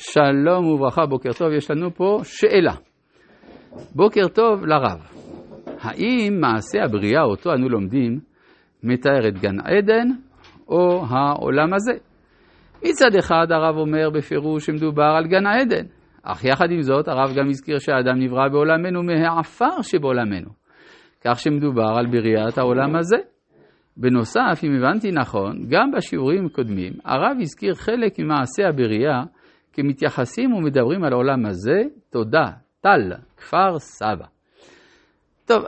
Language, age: Hebrew, 50-69